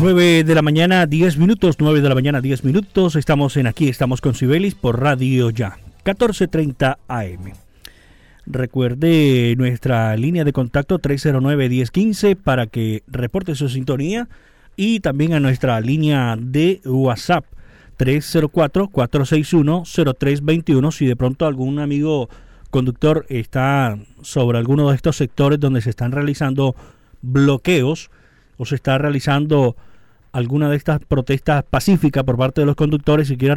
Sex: male